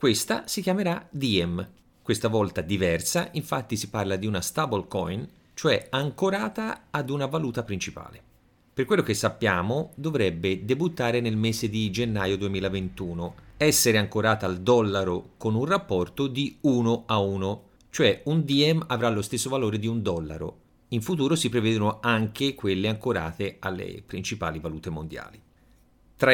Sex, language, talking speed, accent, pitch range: male, Italian, 145 wpm, native, 100-135 Hz